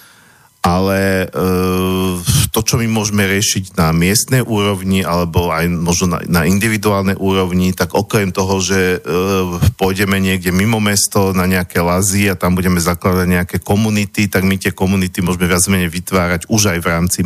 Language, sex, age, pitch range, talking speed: Slovak, male, 50-69, 90-105 Hz, 160 wpm